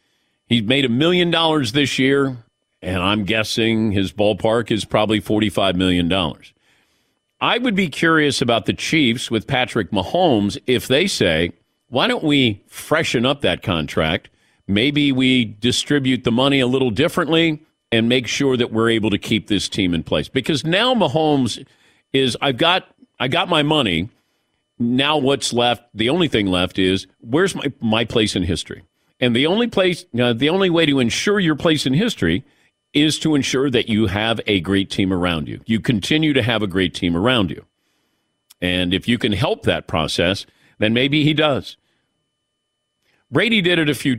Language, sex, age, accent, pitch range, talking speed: English, male, 50-69, American, 105-145 Hz, 180 wpm